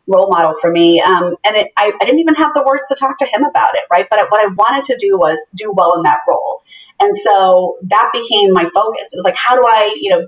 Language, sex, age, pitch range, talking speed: English, female, 30-49, 180-230 Hz, 270 wpm